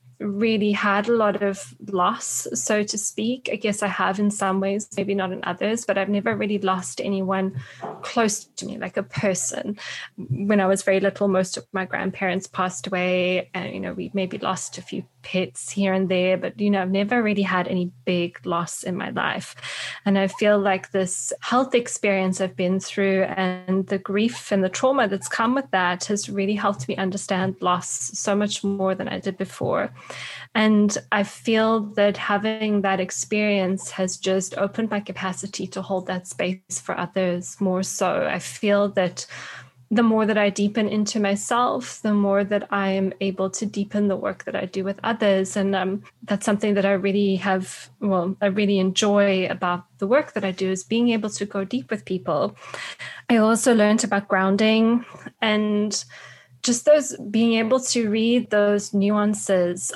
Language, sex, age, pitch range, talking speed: English, female, 10-29, 190-210 Hz, 185 wpm